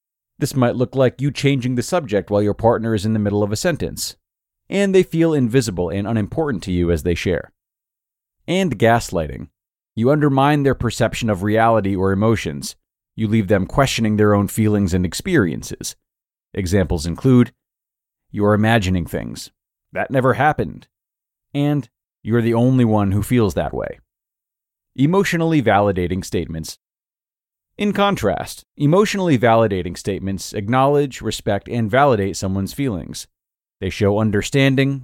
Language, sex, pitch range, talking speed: English, male, 95-130 Hz, 145 wpm